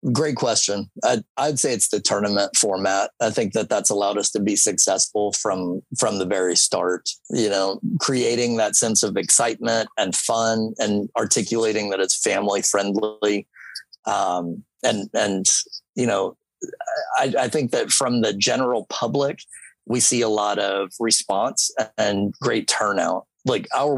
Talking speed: 155 wpm